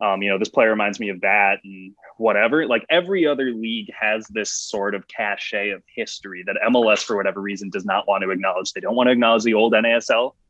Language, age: English, 20-39